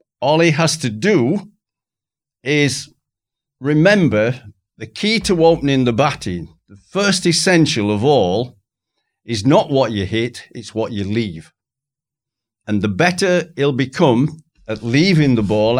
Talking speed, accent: 140 wpm, British